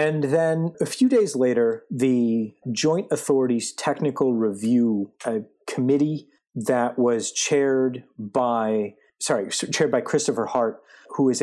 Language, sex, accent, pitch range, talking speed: English, male, American, 110-145 Hz, 125 wpm